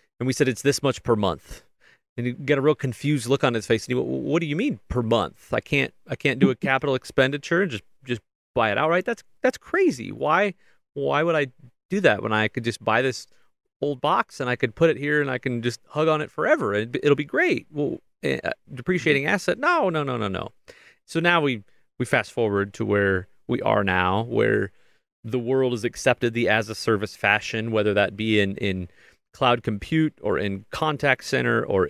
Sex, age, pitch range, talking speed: male, 30-49, 110-145 Hz, 220 wpm